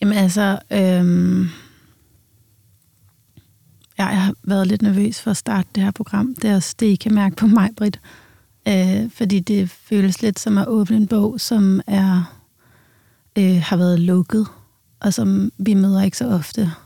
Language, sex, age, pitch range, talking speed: Danish, female, 30-49, 135-200 Hz, 170 wpm